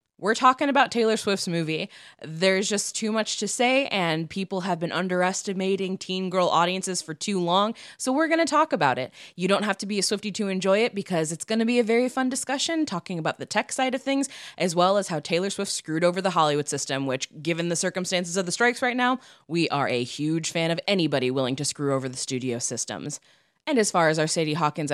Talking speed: 235 wpm